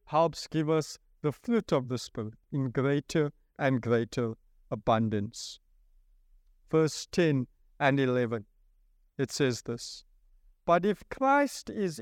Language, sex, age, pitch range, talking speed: English, male, 50-69, 130-185 Hz, 120 wpm